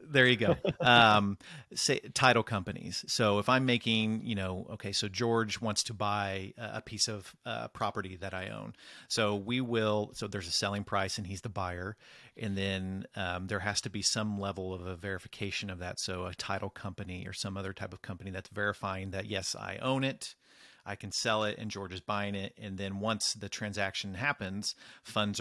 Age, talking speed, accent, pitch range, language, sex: 40-59, 200 wpm, American, 100-115 Hz, English, male